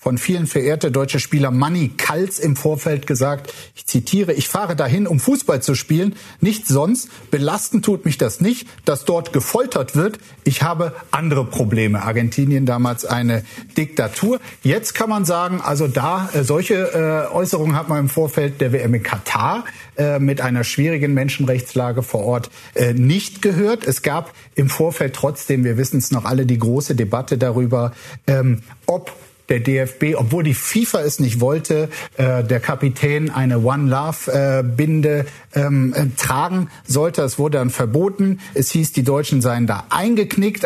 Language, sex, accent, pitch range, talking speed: German, male, German, 125-160 Hz, 150 wpm